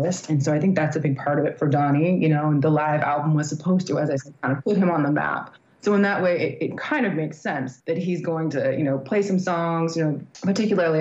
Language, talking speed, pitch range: English, 290 wpm, 140-180 Hz